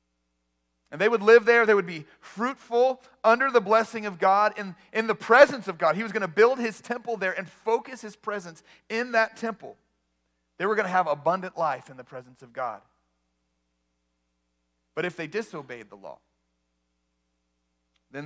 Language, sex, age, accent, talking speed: English, male, 30-49, American, 170 wpm